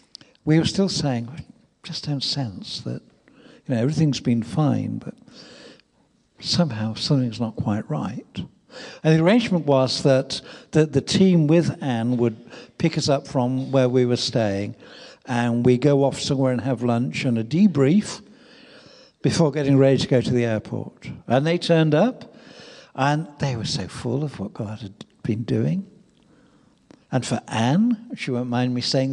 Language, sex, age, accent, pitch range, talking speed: English, male, 60-79, British, 120-165 Hz, 165 wpm